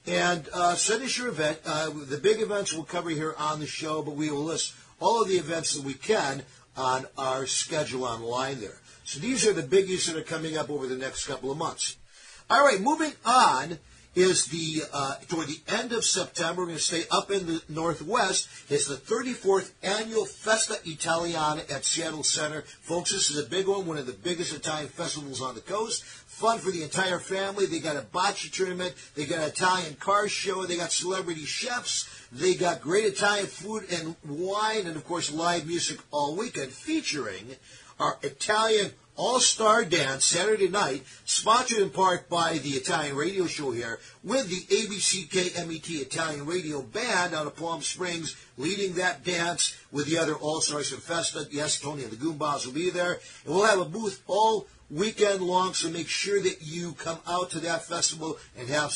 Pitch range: 150-190 Hz